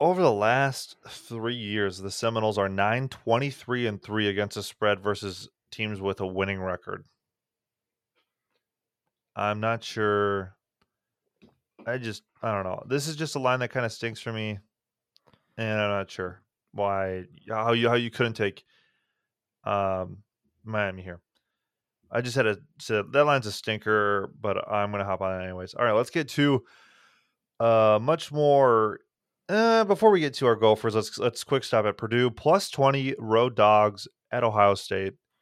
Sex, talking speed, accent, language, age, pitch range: male, 170 wpm, American, English, 20-39, 105-125 Hz